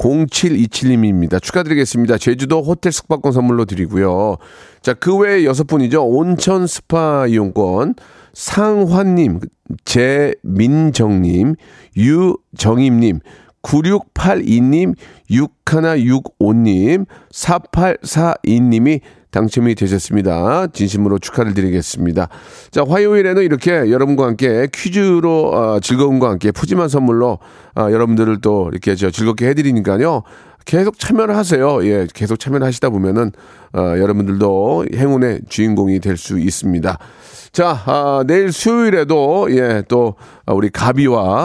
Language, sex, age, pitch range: Korean, male, 40-59, 100-150 Hz